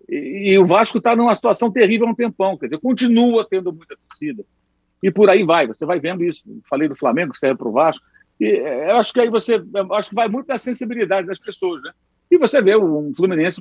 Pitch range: 170-245 Hz